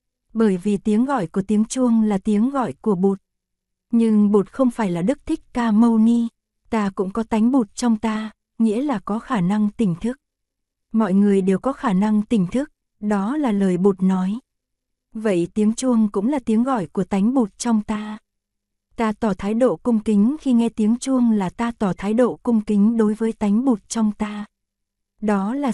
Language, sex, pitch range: Korean, female, 200-235 Hz